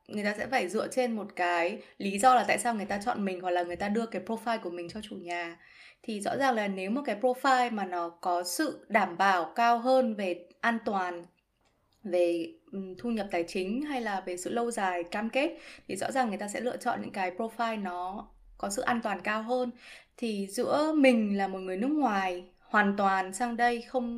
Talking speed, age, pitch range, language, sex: 230 wpm, 20-39, 185-245 Hz, Vietnamese, female